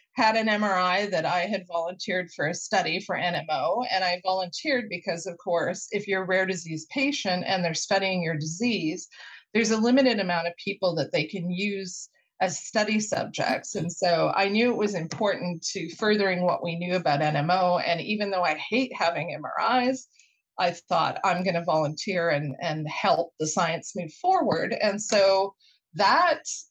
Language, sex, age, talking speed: English, female, 30-49, 175 wpm